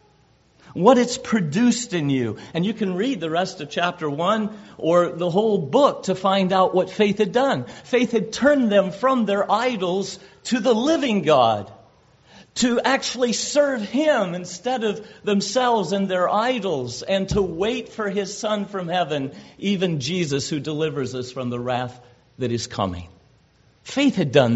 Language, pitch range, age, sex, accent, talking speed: English, 150-220 Hz, 50-69, male, American, 165 wpm